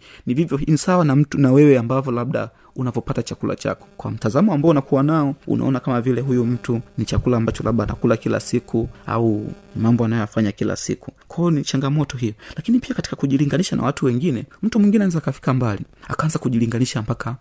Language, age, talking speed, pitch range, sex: Swahili, 30-49, 190 wpm, 110-140 Hz, male